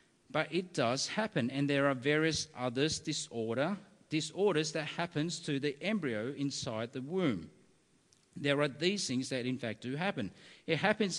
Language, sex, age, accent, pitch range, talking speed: English, male, 50-69, Australian, 135-200 Hz, 160 wpm